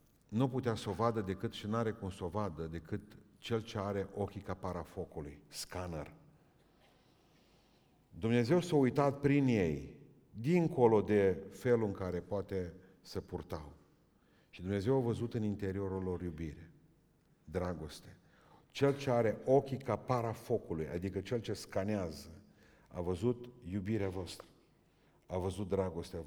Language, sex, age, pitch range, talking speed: Romanian, male, 50-69, 90-115 Hz, 135 wpm